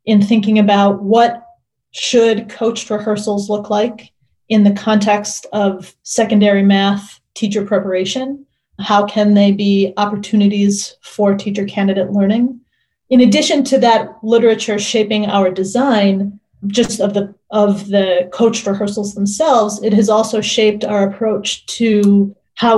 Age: 30-49